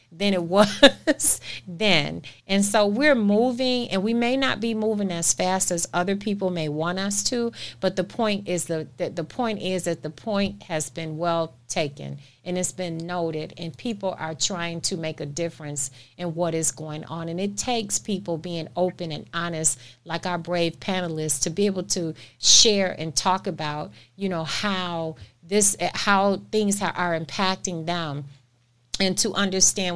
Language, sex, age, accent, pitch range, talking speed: English, female, 40-59, American, 165-220 Hz, 175 wpm